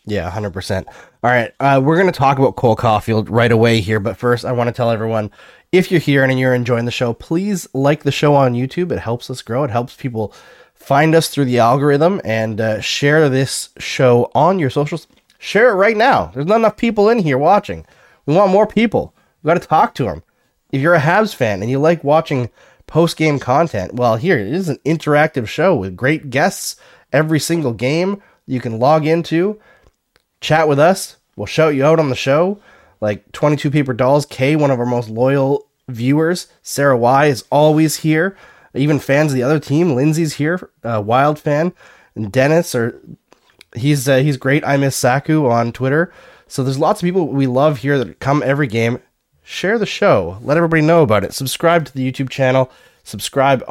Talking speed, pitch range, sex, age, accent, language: 200 wpm, 120-160 Hz, male, 20-39, American, English